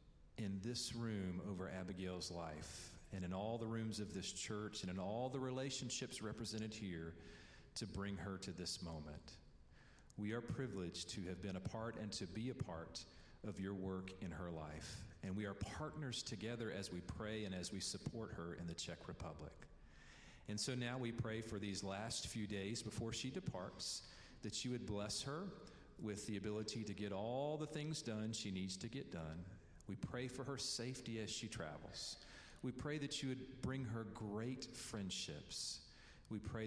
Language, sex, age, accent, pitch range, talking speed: English, male, 40-59, American, 95-120 Hz, 185 wpm